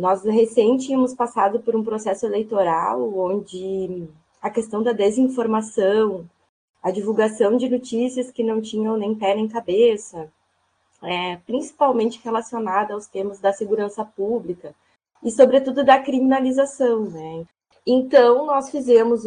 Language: Portuguese